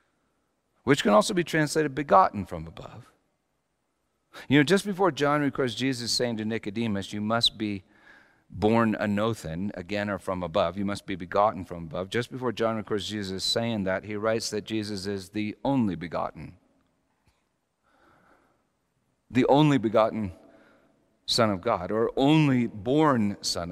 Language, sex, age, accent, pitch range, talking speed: English, male, 50-69, American, 100-140 Hz, 145 wpm